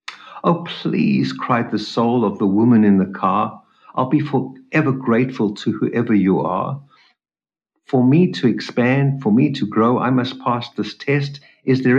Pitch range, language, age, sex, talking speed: 95-125 Hz, English, 60-79, male, 170 wpm